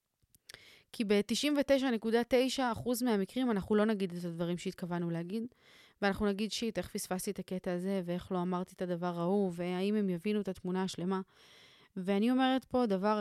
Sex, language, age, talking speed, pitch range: female, Hebrew, 20-39, 160 wpm, 185-225 Hz